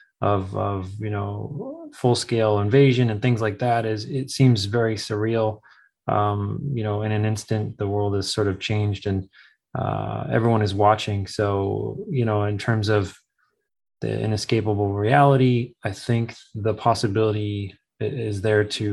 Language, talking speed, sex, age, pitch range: English, 150 wpm, male, 20-39, 105-115 Hz